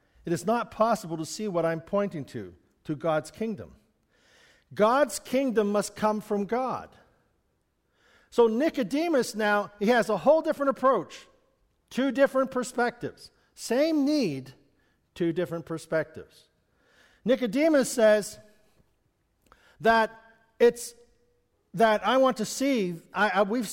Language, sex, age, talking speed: English, male, 50-69, 115 wpm